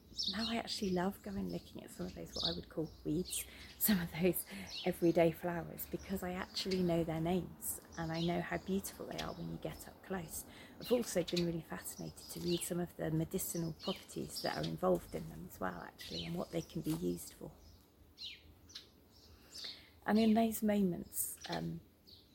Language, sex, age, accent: English, female, 30-49, British